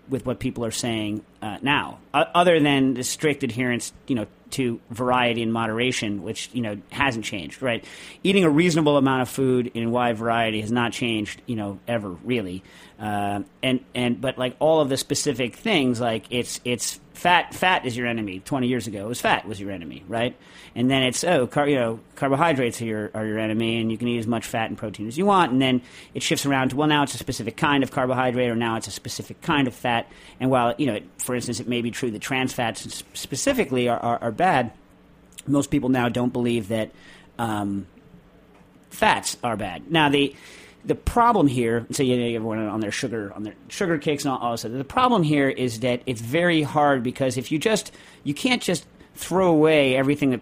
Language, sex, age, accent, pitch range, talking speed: English, male, 40-59, American, 115-135 Hz, 220 wpm